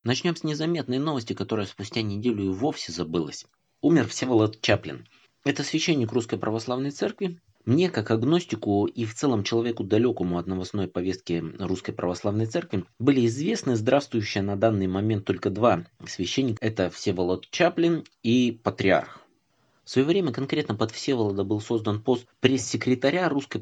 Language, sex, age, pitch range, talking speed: Russian, male, 20-39, 100-135 Hz, 145 wpm